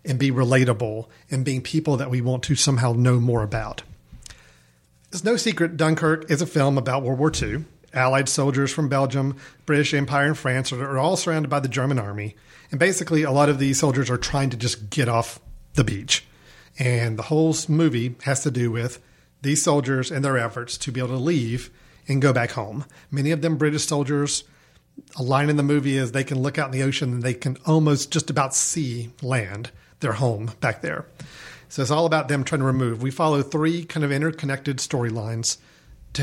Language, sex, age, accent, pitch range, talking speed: English, male, 40-59, American, 125-155 Hz, 205 wpm